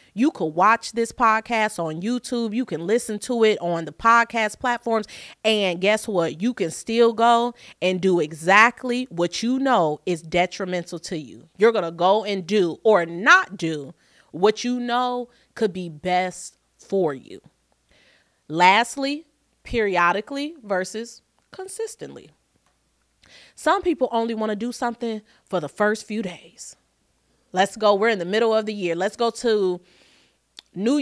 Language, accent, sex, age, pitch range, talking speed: English, American, female, 30-49, 180-240 Hz, 155 wpm